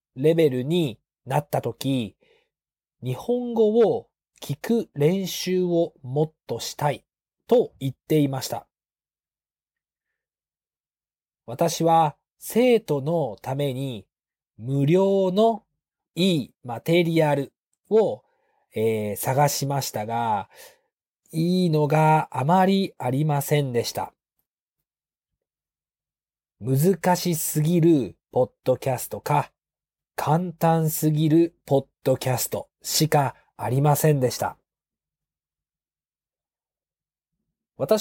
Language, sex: Japanese, male